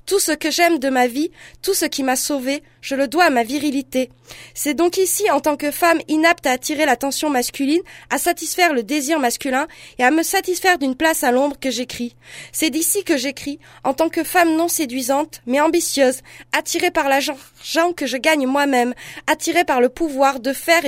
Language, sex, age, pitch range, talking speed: French, female, 20-39, 265-325 Hz, 200 wpm